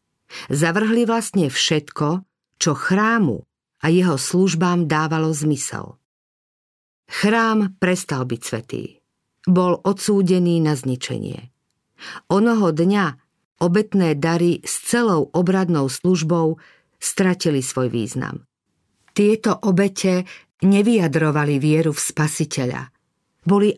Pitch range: 155-195 Hz